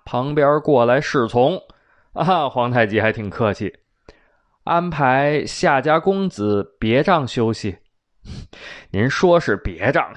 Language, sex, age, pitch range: Chinese, male, 20-39, 110-170 Hz